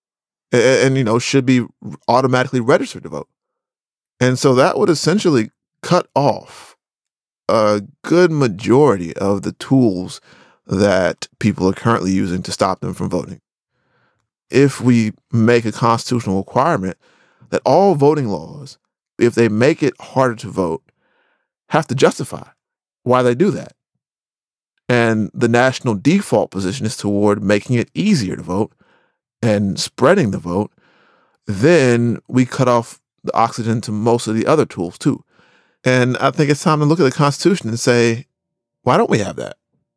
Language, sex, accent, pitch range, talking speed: English, male, American, 110-140 Hz, 155 wpm